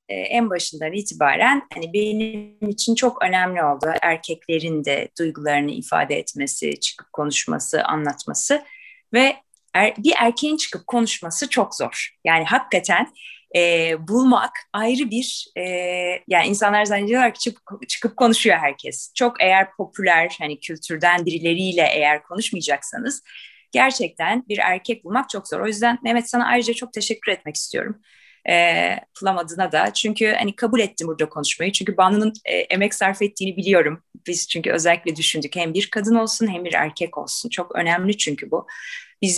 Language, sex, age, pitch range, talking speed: Turkish, female, 30-49, 160-225 Hz, 150 wpm